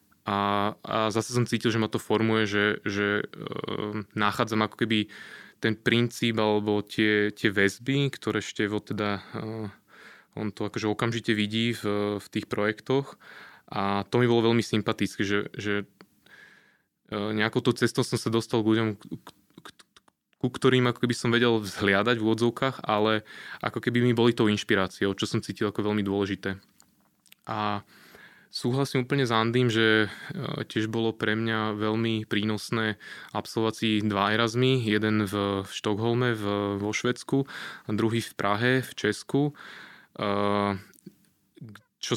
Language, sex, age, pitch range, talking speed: Slovak, male, 20-39, 105-120 Hz, 140 wpm